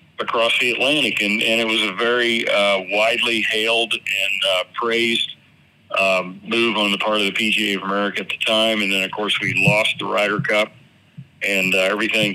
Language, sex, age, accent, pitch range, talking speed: English, male, 40-59, American, 100-110 Hz, 195 wpm